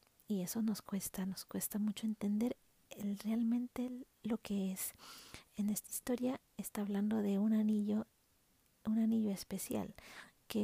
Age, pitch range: 40-59, 205-235 Hz